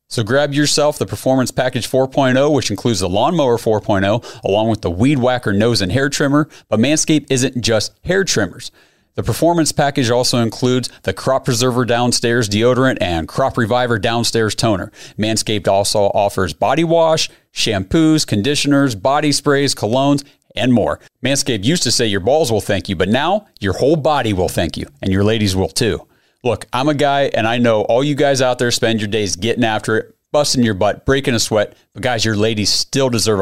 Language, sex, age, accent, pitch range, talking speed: English, male, 40-59, American, 105-140 Hz, 190 wpm